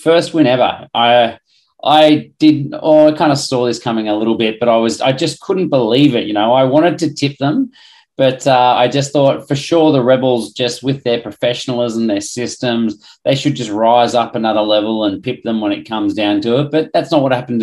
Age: 30-49